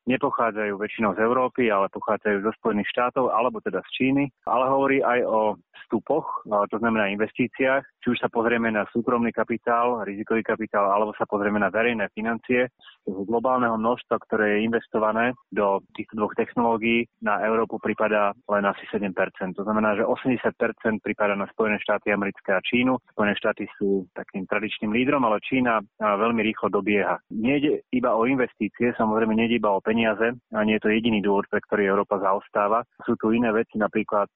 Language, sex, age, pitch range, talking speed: Slovak, male, 30-49, 105-115 Hz, 155 wpm